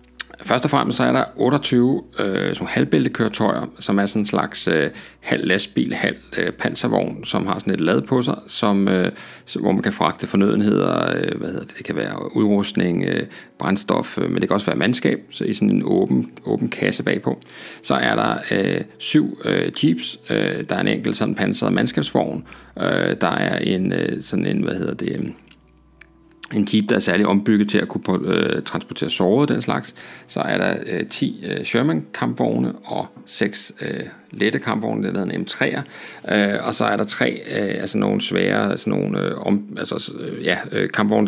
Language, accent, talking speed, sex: Danish, native, 195 wpm, male